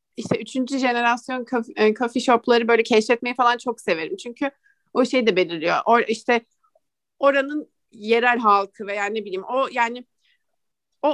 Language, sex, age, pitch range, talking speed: English, female, 30-49, 200-255 Hz, 140 wpm